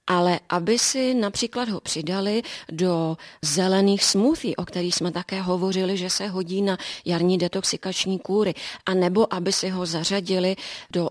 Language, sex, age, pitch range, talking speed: Czech, female, 30-49, 170-195 Hz, 150 wpm